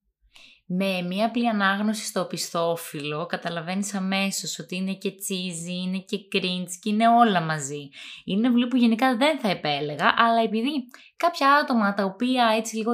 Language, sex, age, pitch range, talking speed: Greek, female, 20-39, 180-250 Hz, 160 wpm